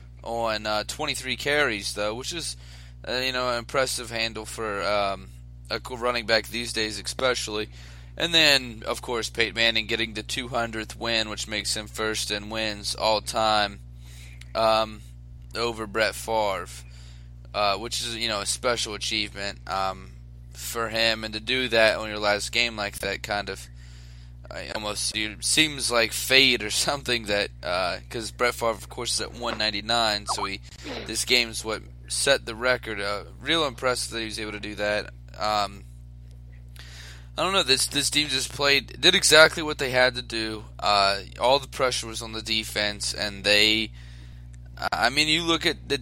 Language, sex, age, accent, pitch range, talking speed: English, male, 20-39, American, 95-125 Hz, 175 wpm